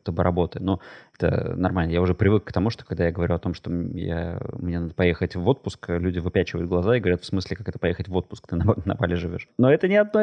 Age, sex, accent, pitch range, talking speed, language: 20-39, male, native, 90-105 Hz, 265 wpm, Russian